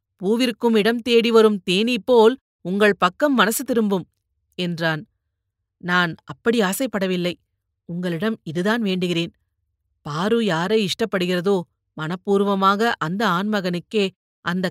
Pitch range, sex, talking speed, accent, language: 160-215 Hz, female, 100 wpm, native, Tamil